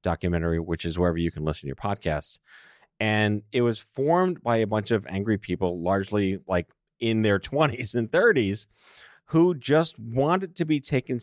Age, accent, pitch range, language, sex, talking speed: 40-59, American, 105-145 Hz, English, male, 175 wpm